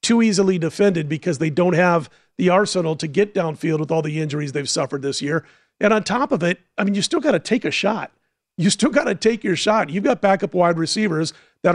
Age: 40-59